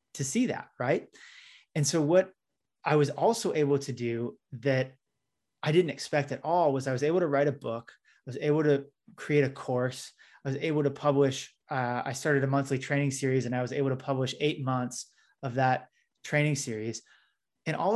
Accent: American